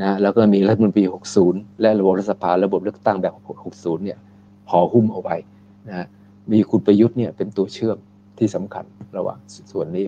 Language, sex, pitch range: Thai, male, 100-115 Hz